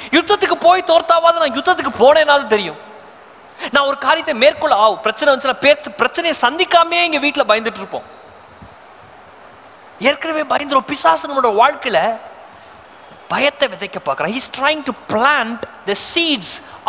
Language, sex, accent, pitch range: Tamil, male, native, 250-330 Hz